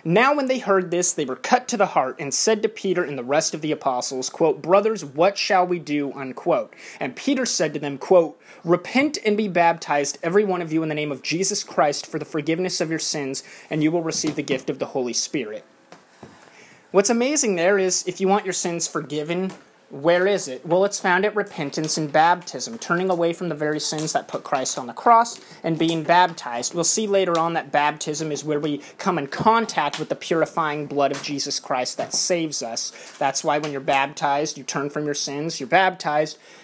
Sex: male